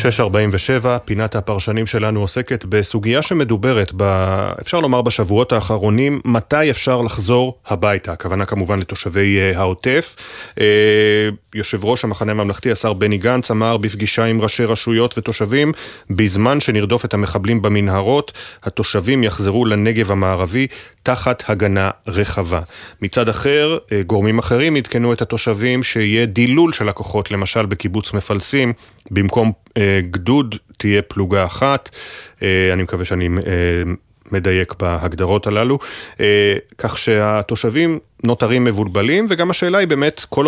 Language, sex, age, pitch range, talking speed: Hebrew, male, 30-49, 100-120 Hz, 120 wpm